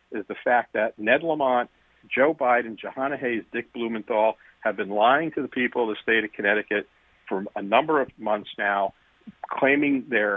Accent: American